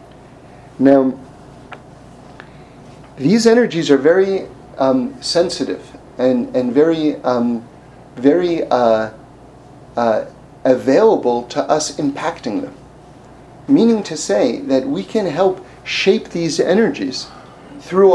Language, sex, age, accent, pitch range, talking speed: English, male, 40-59, American, 140-190 Hz, 95 wpm